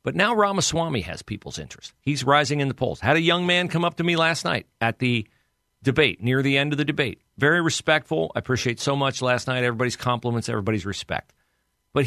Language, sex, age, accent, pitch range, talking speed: English, male, 50-69, American, 120-160 Hz, 215 wpm